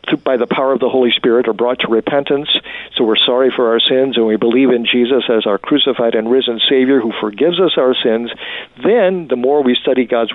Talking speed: 225 wpm